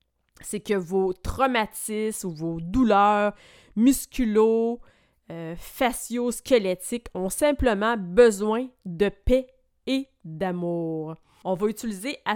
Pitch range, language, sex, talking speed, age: 185-245 Hz, French, female, 95 wpm, 30-49